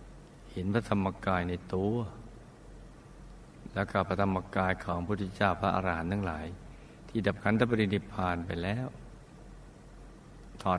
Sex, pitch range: male, 90-105 Hz